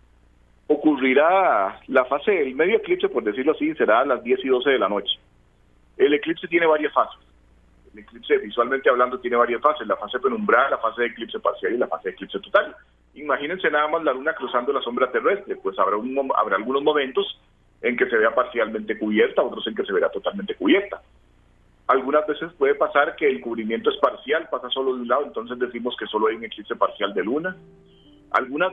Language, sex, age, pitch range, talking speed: Spanish, male, 40-59, 115-165 Hz, 205 wpm